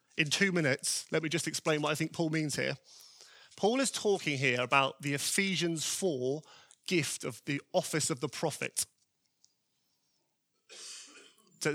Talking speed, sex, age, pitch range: 150 wpm, male, 30-49, 145-180 Hz